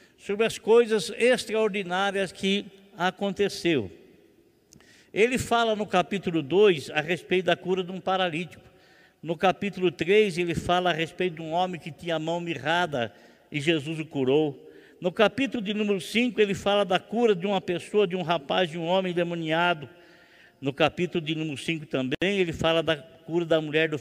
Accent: Brazilian